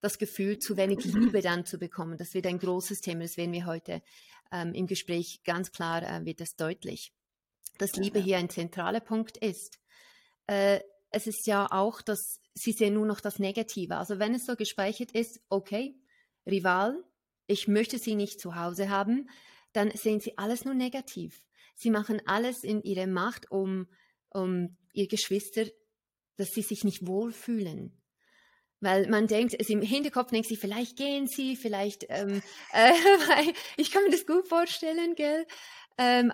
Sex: female